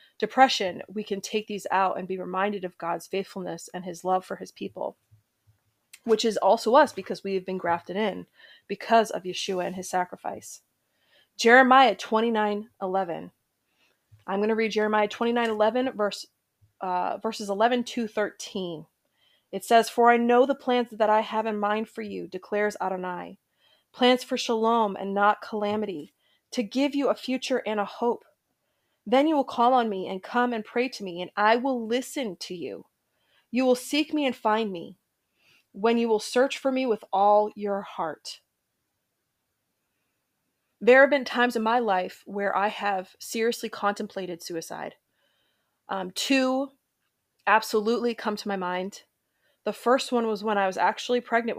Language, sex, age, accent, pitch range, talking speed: English, female, 20-39, American, 190-235 Hz, 165 wpm